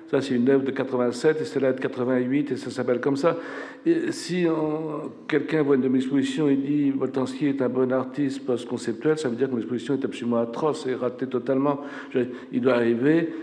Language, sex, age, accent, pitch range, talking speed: French, male, 60-79, French, 125-155 Hz, 205 wpm